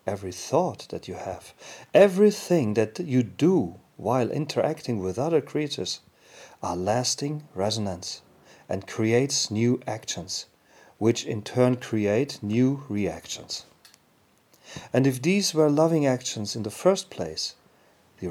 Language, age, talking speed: English, 40-59, 125 wpm